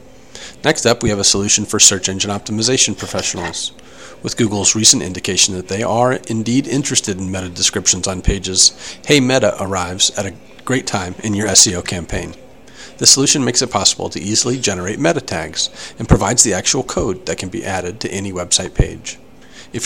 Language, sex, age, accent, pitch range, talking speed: English, male, 40-59, American, 95-120 Hz, 180 wpm